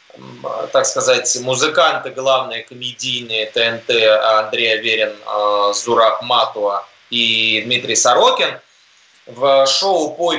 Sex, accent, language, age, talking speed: male, native, Russian, 20-39, 90 wpm